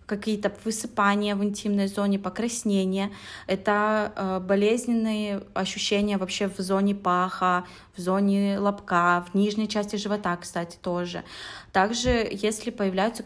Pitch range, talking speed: 185-210 Hz, 115 wpm